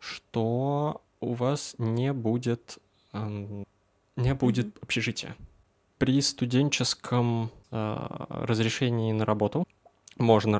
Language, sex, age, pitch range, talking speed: Russian, male, 20-39, 105-125 Hz, 85 wpm